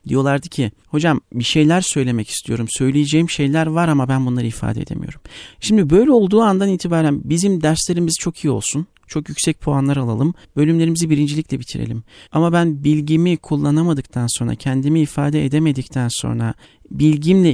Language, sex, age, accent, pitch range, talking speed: Turkish, male, 40-59, native, 130-165 Hz, 145 wpm